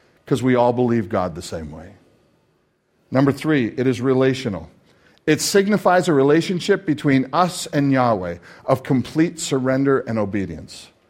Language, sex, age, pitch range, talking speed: English, male, 50-69, 115-145 Hz, 140 wpm